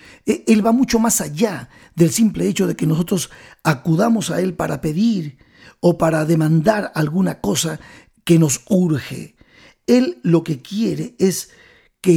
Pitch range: 160-215 Hz